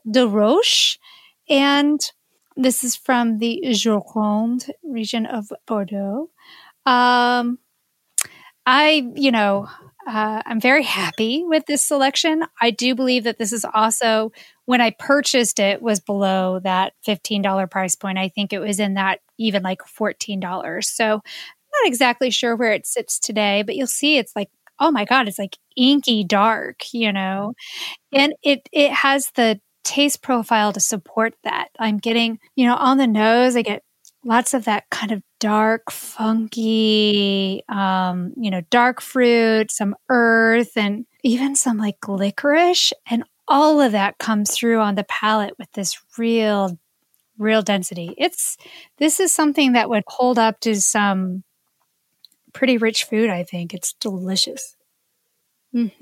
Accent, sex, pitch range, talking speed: American, female, 210-260 Hz, 155 wpm